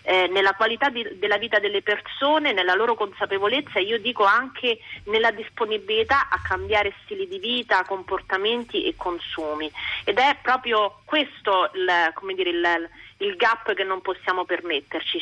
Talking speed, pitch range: 155 wpm, 185-245 Hz